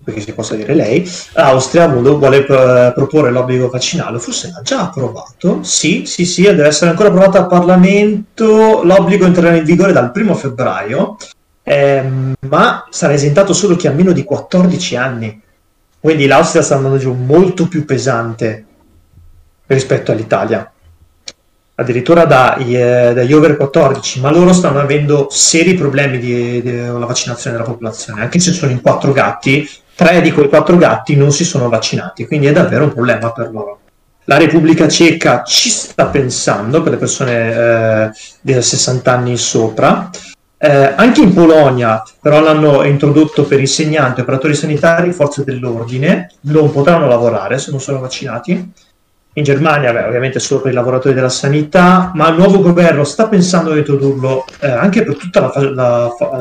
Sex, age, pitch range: male, 30-49, 125-170 Hz